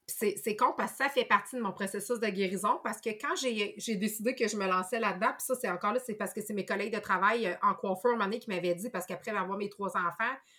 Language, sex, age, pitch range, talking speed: French, female, 30-49, 195-245 Hz, 290 wpm